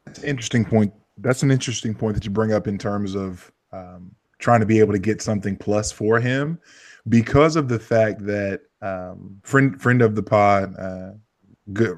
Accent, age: American, 20-39